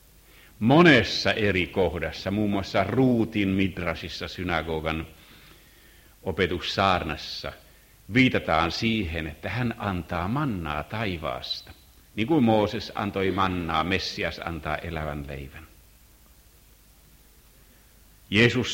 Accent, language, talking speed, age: native, Finnish, 85 wpm, 60-79